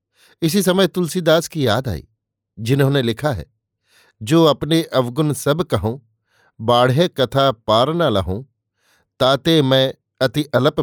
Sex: male